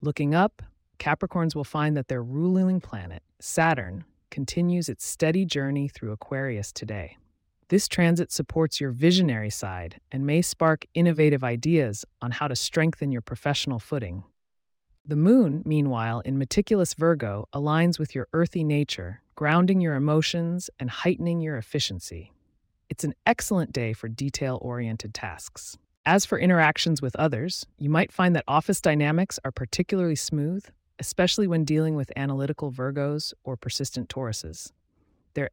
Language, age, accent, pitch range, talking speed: English, 30-49, American, 120-165 Hz, 140 wpm